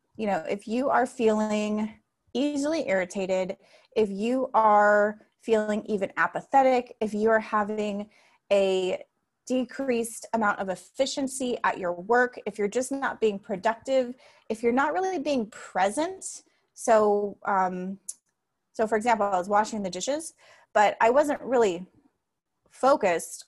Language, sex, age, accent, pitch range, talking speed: English, female, 20-39, American, 195-250 Hz, 135 wpm